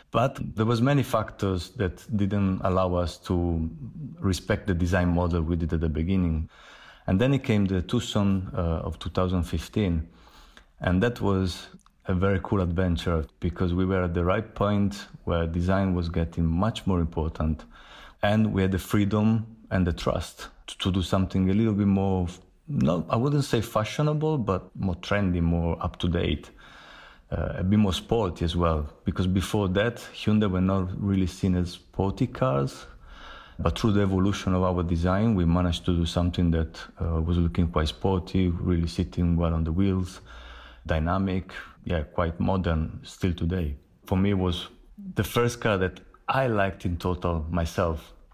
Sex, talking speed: male, 170 wpm